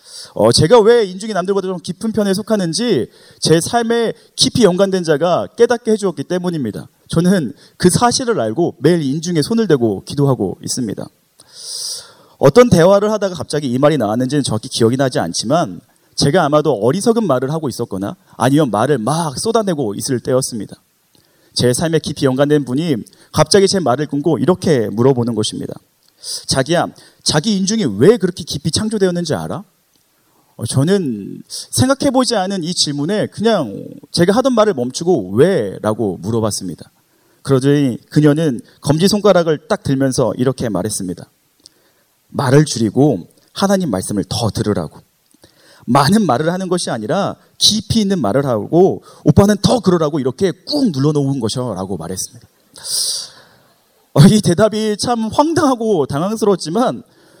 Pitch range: 135-210 Hz